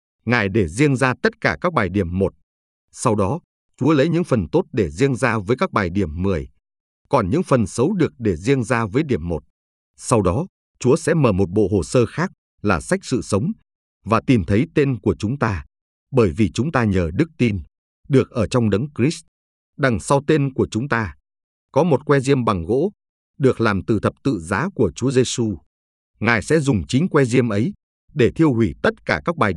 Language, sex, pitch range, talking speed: Vietnamese, male, 95-135 Hz, 210 wpm